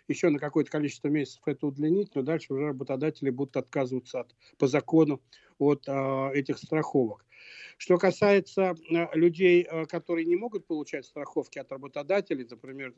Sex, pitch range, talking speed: male, 135-160 Hz, 155 wpm